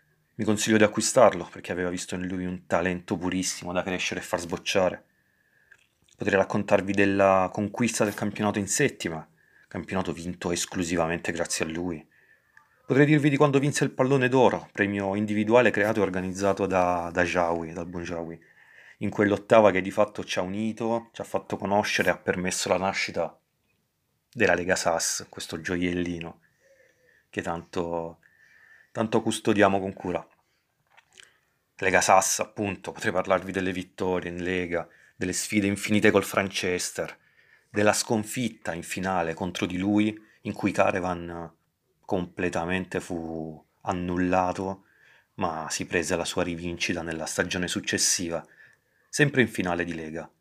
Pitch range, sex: 90-105 Hz, male